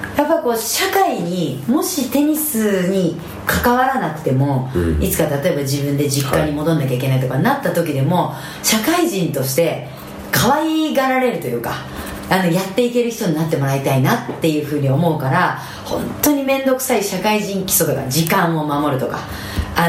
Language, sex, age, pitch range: Japanese, female, 40-59, 145-225 Hz